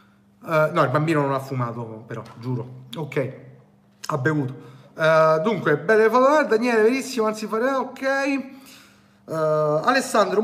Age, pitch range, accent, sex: 40-59, 155-230 Hz, native, male